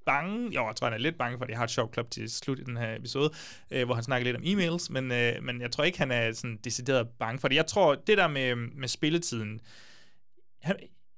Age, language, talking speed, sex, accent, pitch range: 30-49, Danish, 265 wpm, male, native, 120-160 Hz